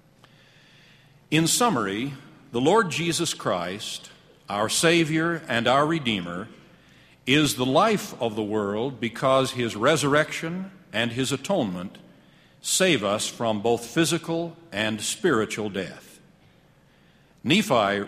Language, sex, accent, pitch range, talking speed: English, male, American, 110-155 Hz, 105 wpm